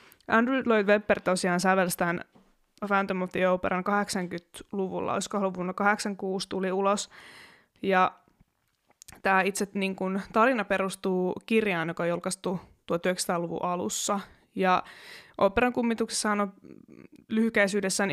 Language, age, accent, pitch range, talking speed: Finnish, 20-39, native, 180-205 Hz, 110 wpm